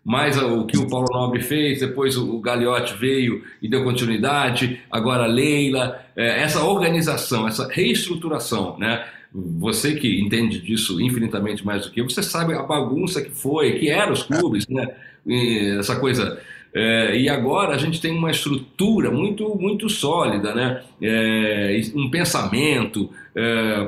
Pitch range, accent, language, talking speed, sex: 115-165 Hz, Brazilian, Portuguese, 150 wpm, male